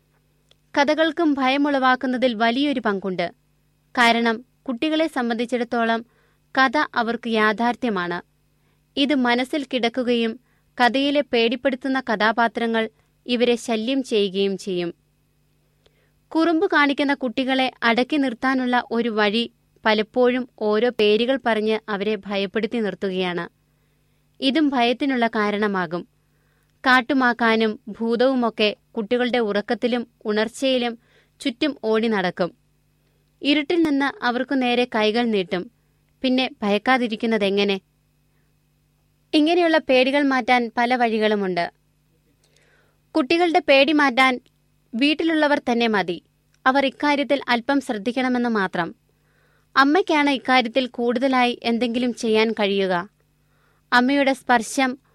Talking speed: 85 wpm